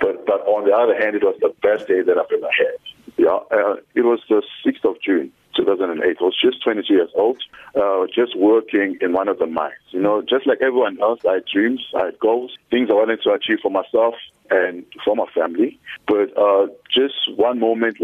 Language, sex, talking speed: English, male, 220 wpm